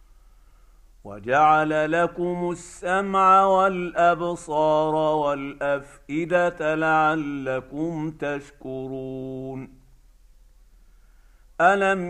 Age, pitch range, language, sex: 50-69, 150-185 Hz, Arabic, male